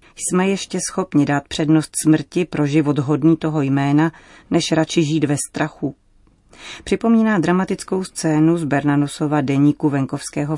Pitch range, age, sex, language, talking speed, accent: 145-165 Hz, 30-49, female, Czech, 130 wpm, native